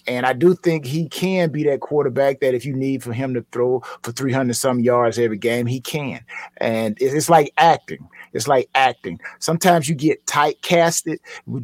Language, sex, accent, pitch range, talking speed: English, male, American, 135-165 Hz, 185 wpm